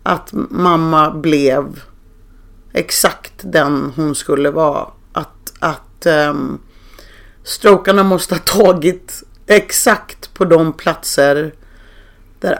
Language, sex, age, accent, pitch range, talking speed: English, female, 30-49, Swedish, 155-195 Hz, 95 wpm